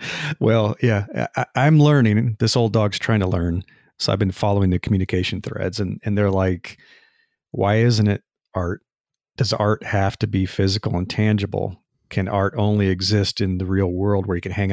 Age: 40-59